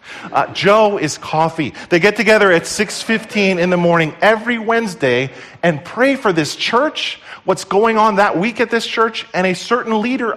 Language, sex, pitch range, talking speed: English, male, 145-205 Hz, 180 wpm